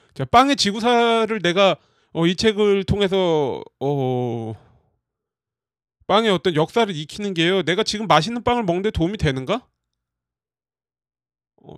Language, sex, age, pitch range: Korean, male, 40-59, 140-225 Hz